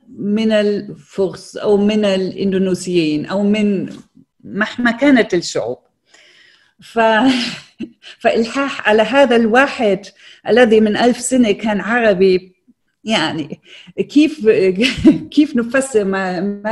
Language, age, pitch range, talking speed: Arabic, 50-69, 175-230 Hz, 95 wpm